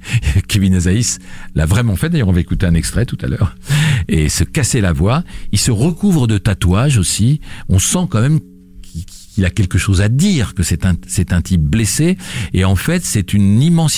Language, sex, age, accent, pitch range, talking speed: French, male, 60-79, French, 90-120 Hz, 205 wpm